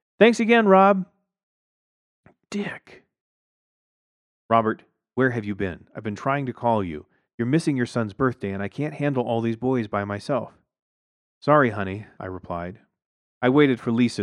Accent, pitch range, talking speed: American, 95-125 Hz, 155 wpm